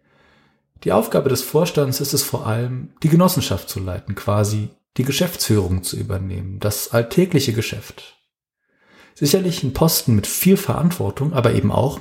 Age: 40-59